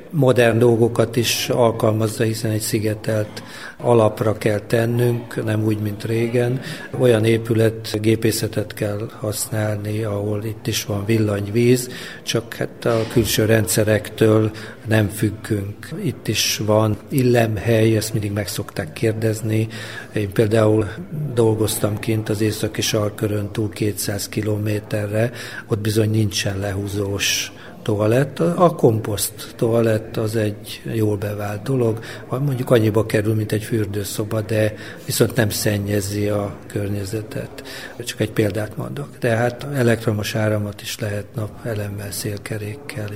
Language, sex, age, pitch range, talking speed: Hungarian, male, 50-69, 105-120 Hz, 120 wpm